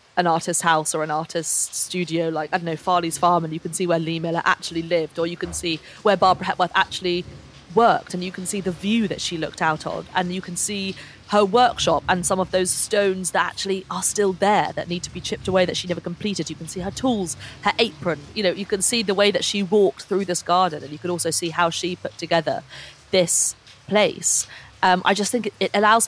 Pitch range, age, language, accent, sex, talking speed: 160-195 Hz, 30-49, English, British, female, 240 wpm